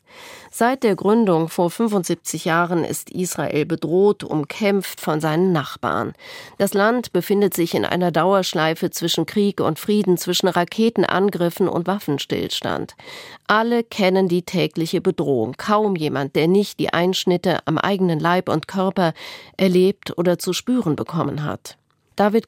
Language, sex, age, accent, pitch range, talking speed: German, female, 40-59, German, 175-210 Hz, 135 wpm